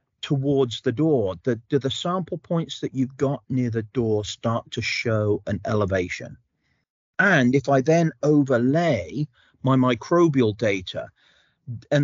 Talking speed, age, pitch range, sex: 140 wpm, 40-59, 110-140 Hz, male